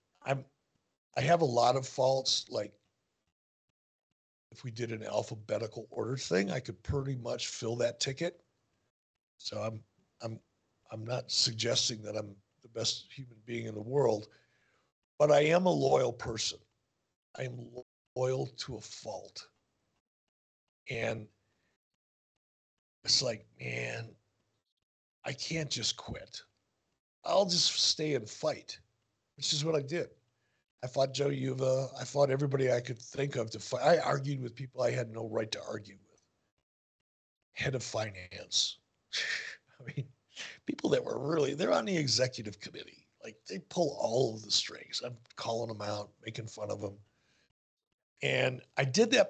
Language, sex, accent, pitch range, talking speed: English, male, American, 110-140 Hz, 150 wpm